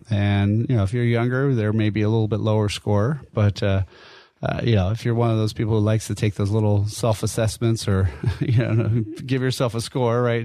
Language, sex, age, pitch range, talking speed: English, male, 30-49, 105-125 Hz, 235 wpm